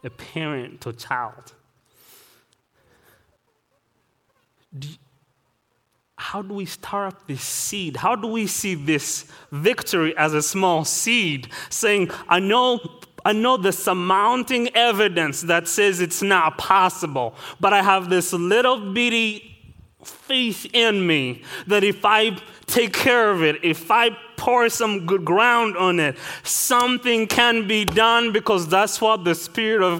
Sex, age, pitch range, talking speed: male, 30-49, 150-210 Hz, 140 wpm